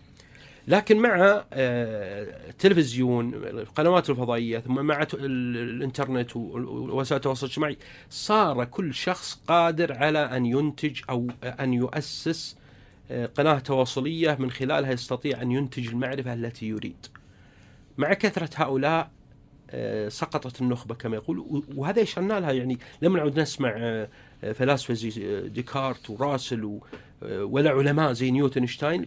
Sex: male